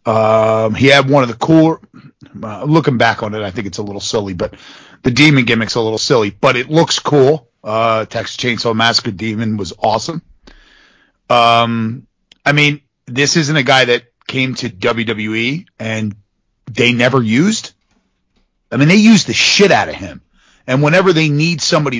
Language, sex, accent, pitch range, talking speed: English, male, American, 110-145 Hz, 175 wpm